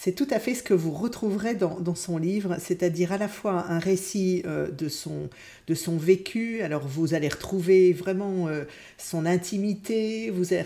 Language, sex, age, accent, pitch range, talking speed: French, female, 50-69, French, 170-215 Hz, 190 wpm